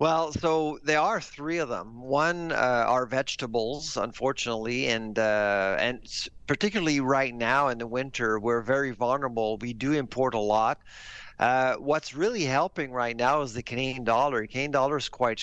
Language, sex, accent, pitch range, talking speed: English, male, American, 120-140 Hz, 165 wpm